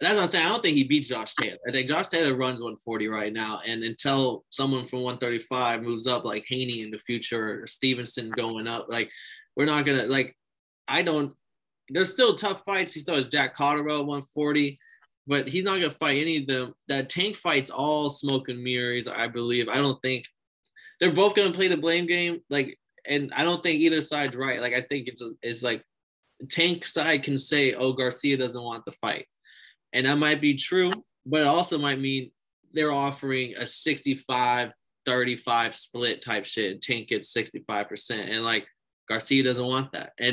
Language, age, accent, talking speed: English, 20-39, American, 205 wpm